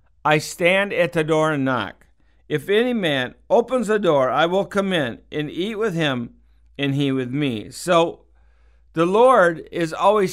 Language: English